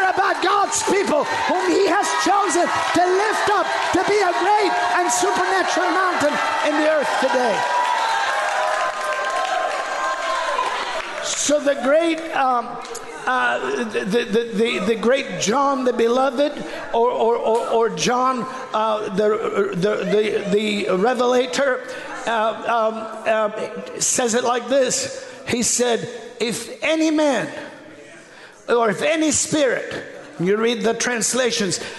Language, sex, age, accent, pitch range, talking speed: English, male, 50-69, American, 225-280 Hz, 120 wpm